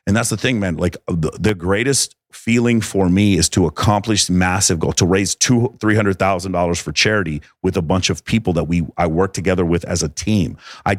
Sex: male